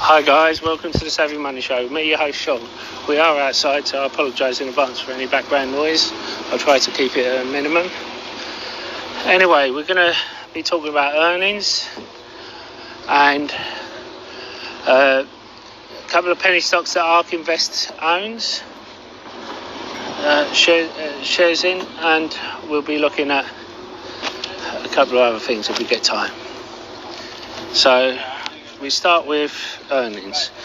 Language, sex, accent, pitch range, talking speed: English, male, British, 145-170 Hz, 150 wpm